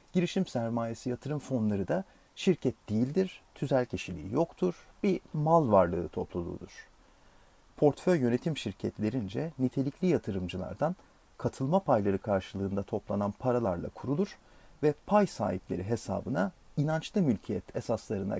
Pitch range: 100-145 Hz